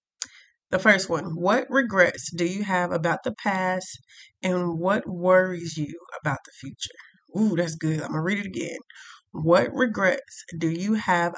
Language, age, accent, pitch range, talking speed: English, 20-39, American, 170-245 Hz, 170 wpm